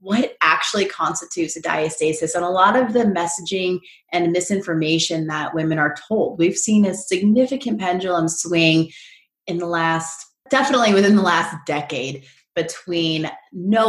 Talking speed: 145 wpm